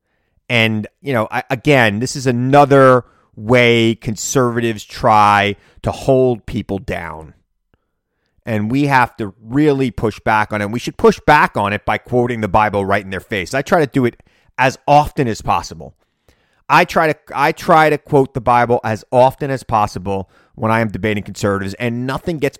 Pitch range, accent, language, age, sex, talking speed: 105-135 Hz, American, English, 30-49, male, 175 wpm